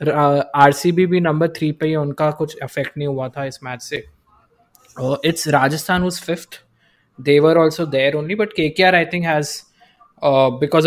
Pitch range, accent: 135-165 Hz, native